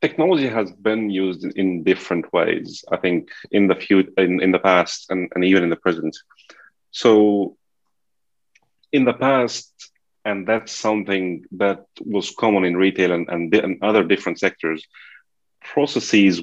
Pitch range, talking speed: 90-105 Hz, 150 wpm